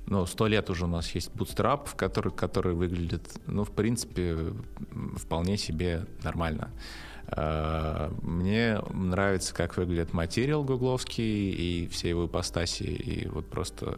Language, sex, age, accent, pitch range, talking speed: Russian, male, 20-39, native, 85-100 Hz, 125 wpm